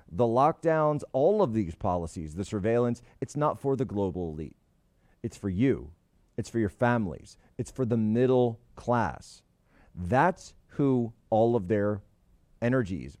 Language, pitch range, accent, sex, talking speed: English, 95-125 Hz, American, male, 145 wpm